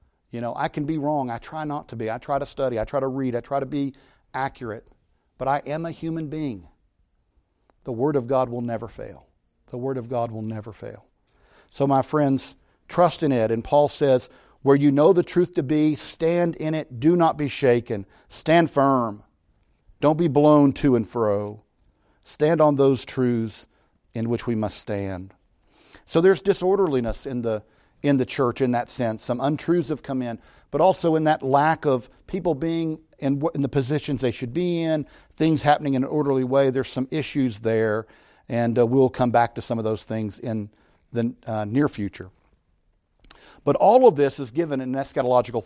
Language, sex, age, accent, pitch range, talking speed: English, male, 50-69, American, 115-150 Hz, 195 wpm